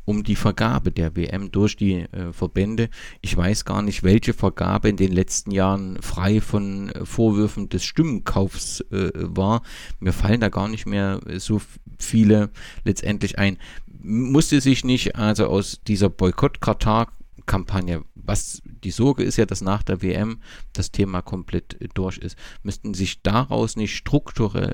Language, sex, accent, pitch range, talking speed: German, male, German, 95-110 Hz, 155 wpm